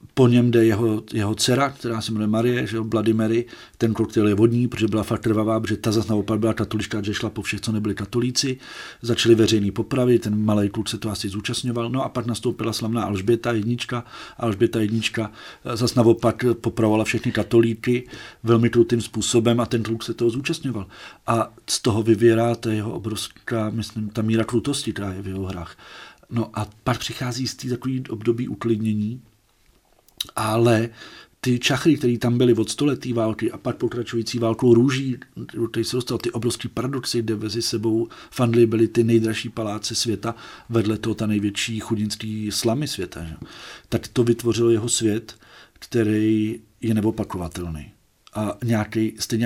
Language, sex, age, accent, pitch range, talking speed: Czech, male, 40-59, native, 105-120 Hz, 165 wpm